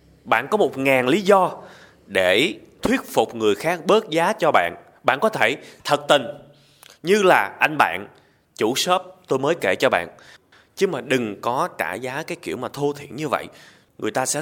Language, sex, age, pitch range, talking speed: Vietnamese, male, 20-39, 120-185 Hz, 195 wpm